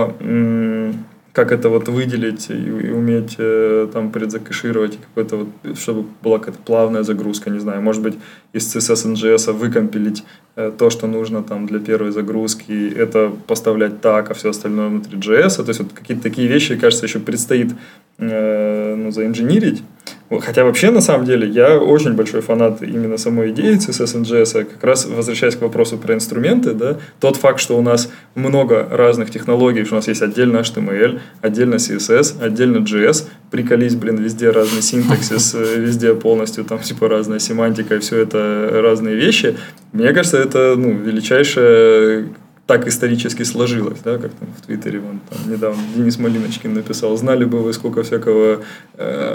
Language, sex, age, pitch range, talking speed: Russian, male, 20-39, 110-125 Hz, 150 wpm